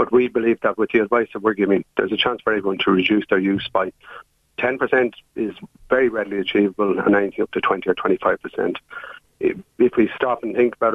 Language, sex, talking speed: English, male, 210 wpm